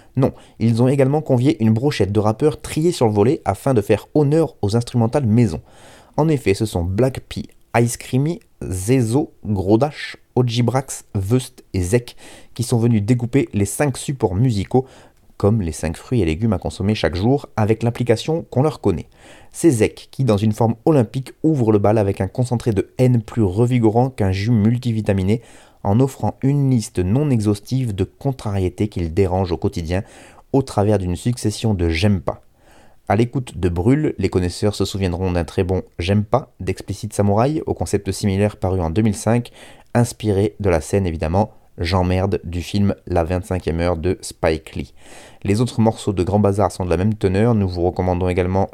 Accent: French